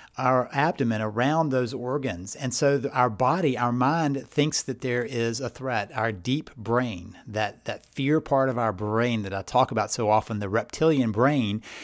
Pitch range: 115-135 Hz